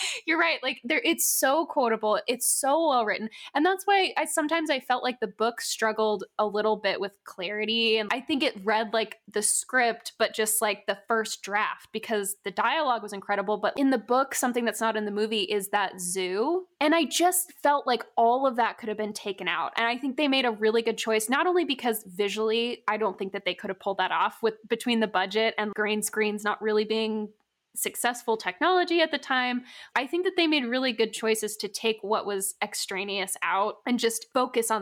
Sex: female